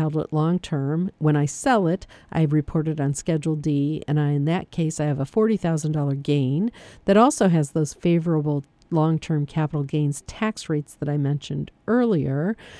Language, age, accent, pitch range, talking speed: English, 50-69, American, 145-165 Hz, 170 wpm